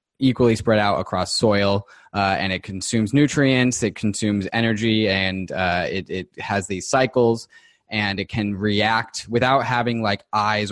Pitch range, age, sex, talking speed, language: 95-115 Hz, 20-39, male, 155 wpm, English